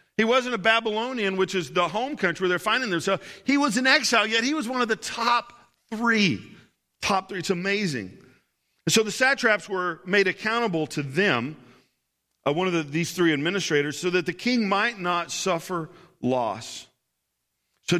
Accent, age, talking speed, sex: American, 50-69, 175 wpm, male